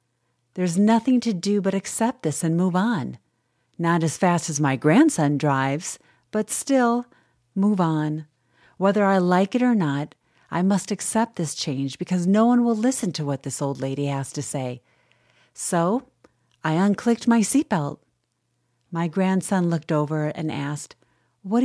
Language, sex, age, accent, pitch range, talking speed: English, female, 40-59, American, 150-235 Hz, 160 wpm